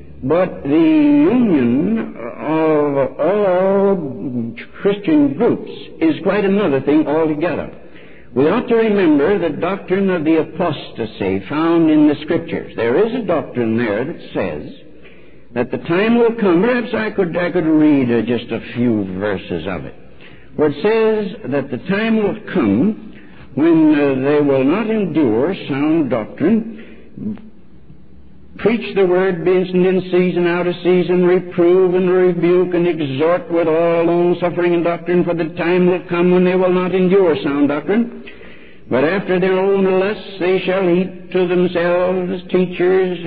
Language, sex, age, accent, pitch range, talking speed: English, male, 60-79, American, 155-195 Hz, 150 wpm